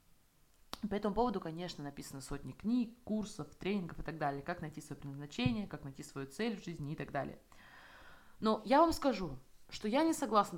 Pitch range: 170-230 Hz